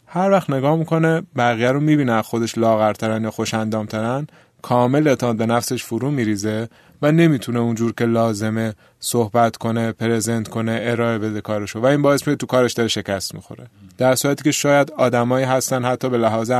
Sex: male